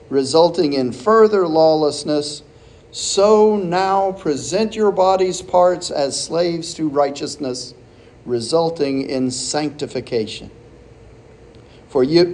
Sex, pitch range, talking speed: male, 125-185 Hz, 90 wpm